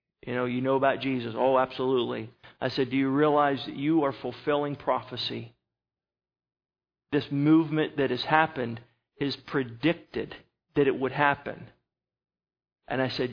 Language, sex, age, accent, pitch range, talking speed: English, male, 40-59, American, 125-150 Hz, 145 wpm